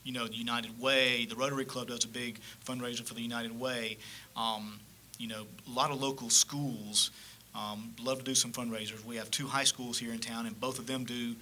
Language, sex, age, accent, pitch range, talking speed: English, male, 40-59, American, 115-130 Hz, 225 wpm